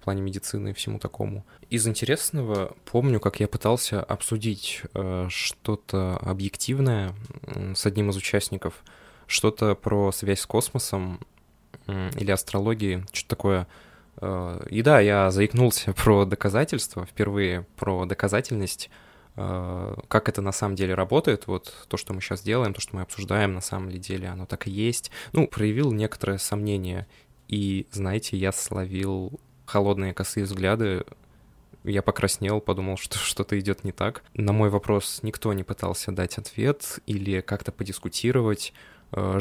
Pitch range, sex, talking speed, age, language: 95-110 Hz, male, 135 wpm, 20-39, Russian